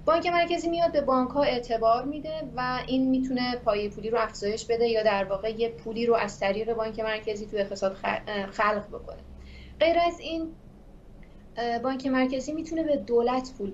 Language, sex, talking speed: Persian, female, 165 wpm